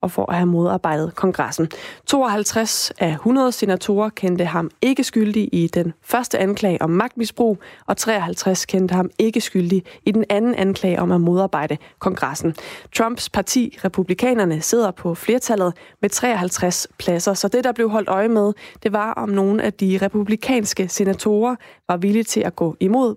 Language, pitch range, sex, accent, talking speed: Danish, 180-220 Hz, female, native, 165 wpm